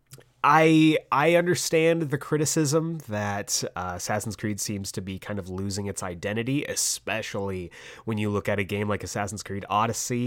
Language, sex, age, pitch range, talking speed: English, male, 30-49, 105-140 Hz, 165 wpm